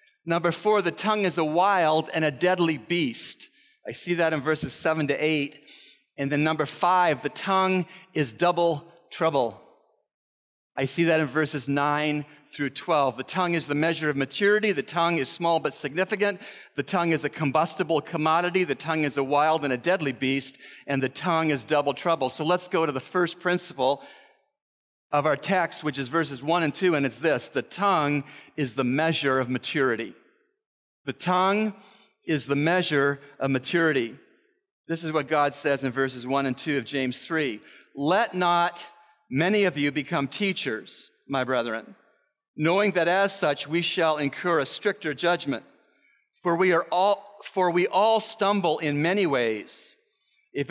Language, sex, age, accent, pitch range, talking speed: English, male, 40-59, American, 145-180 Hz, 175 wpm